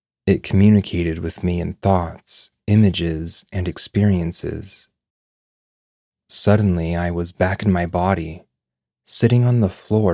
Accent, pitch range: American, 85-100 Hz